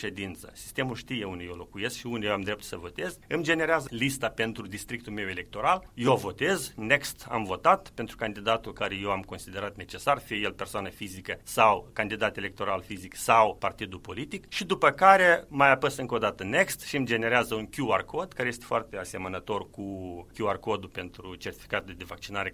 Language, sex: Romanian, male